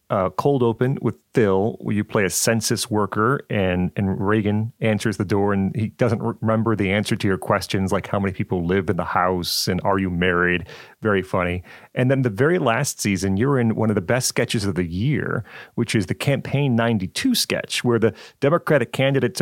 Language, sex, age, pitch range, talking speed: English, male, 40-59, 100-125 Hz, 205 wpm